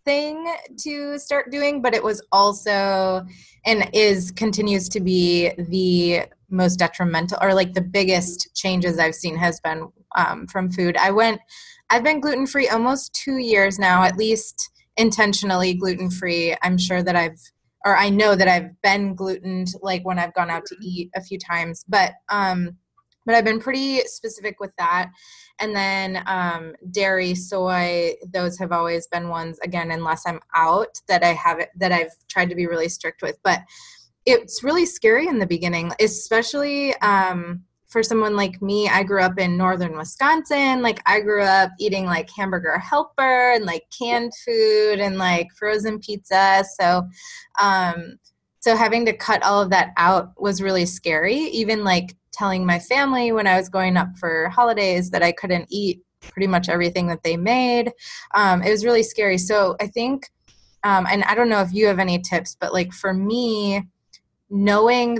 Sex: female